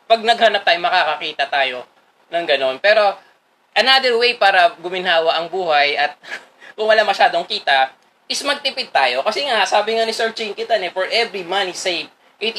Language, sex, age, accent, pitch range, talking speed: Filipino, male, 20-39, native, 195-260 Hz, 160 wpm